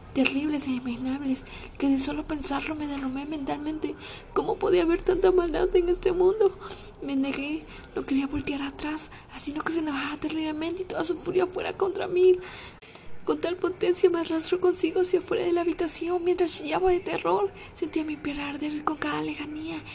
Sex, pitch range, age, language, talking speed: female, 275-345 Hz, 20-39, Spanish, 175 wpm